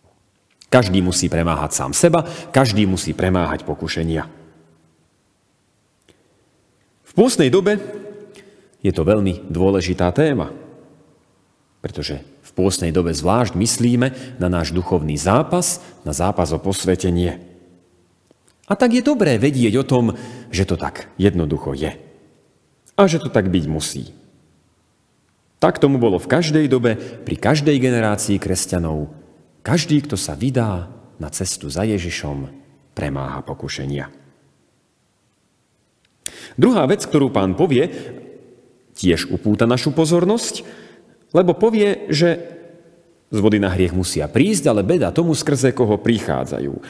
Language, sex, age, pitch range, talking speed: Slovak, male, 40-59, 85-140 Hz, 120 wpm